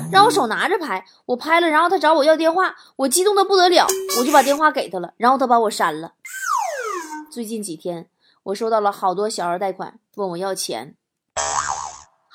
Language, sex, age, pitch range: Chinese, female, 20-39, 205-305 Hz